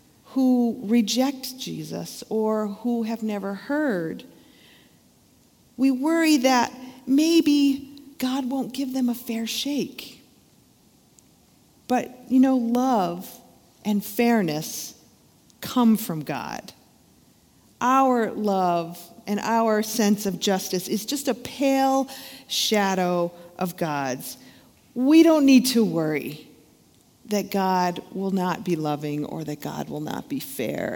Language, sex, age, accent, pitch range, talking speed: English, female, 40-59, American, 180-255 Hz, 115 wpm